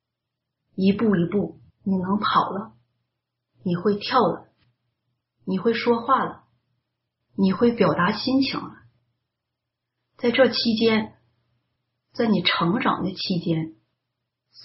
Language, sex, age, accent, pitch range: Chinese, female, 30-49, native, 125-195 Hz